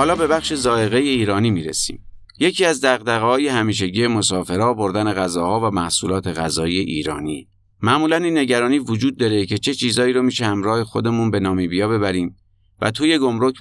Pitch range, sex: 95-125 Hz, male